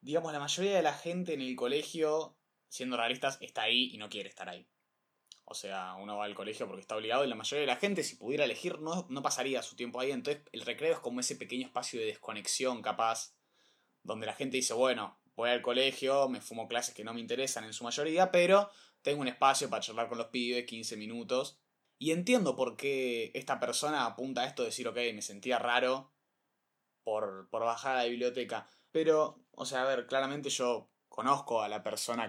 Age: 20-39